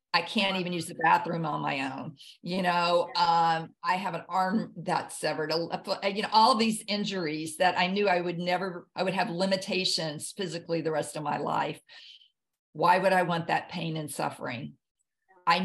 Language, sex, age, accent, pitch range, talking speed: English, female, 50-69, American, 165-190 Hz, 195 wpm